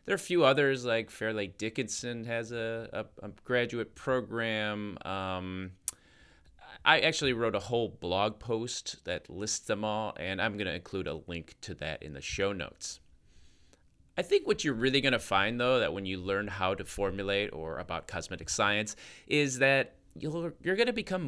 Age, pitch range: 30-49, 90-120 Hz